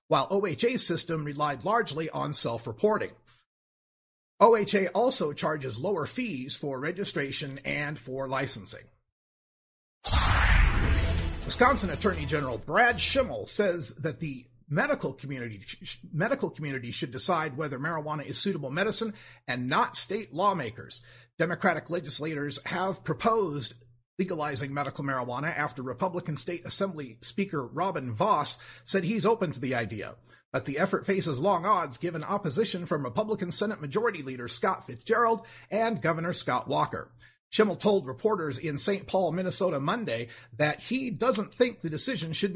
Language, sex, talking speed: English, male, 135 wpm